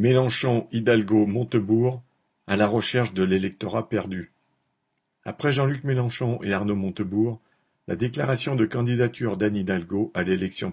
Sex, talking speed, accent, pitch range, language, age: male, 130 wpm, French, 105-125 Hz, French, 50-69